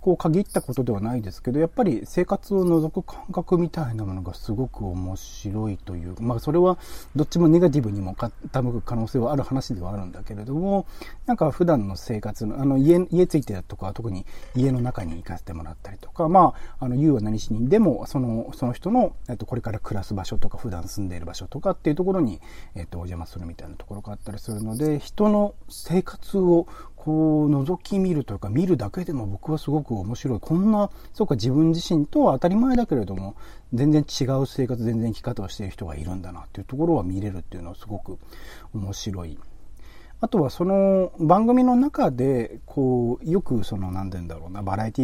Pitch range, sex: 100-160 Hz, male